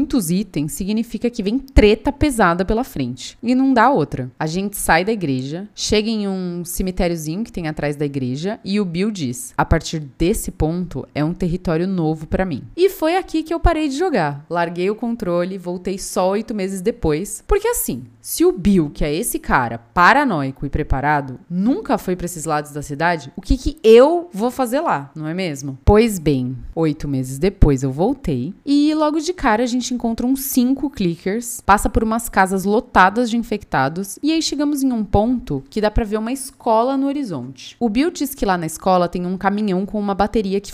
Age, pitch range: 20-39, 160-235 Hz